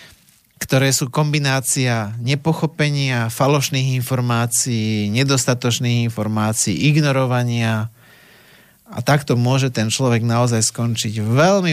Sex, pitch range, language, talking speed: male, 115-140 Hz, Slovak, 85 wpm